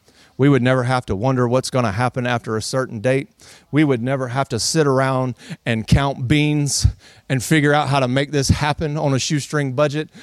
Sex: male